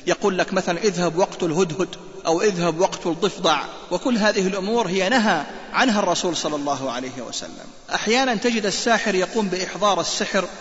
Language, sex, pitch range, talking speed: Arabic, male, 165-205 Hz, 155 wpm